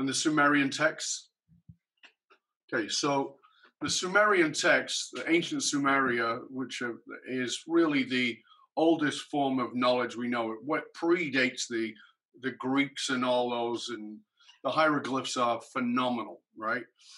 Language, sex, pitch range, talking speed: English, male, 120-155 Hz, 135 wpm